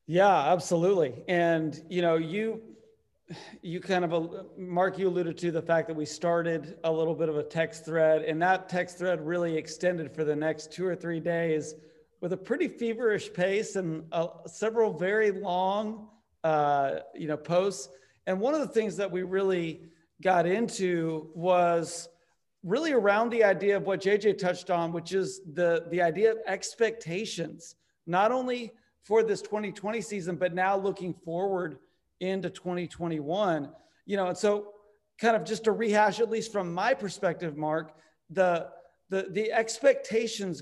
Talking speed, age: 165 wpm, 40-59